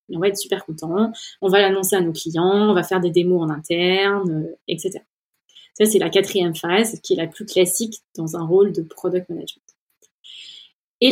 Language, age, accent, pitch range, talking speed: French, 20-39, French, 185-220 Hz, 195 wpm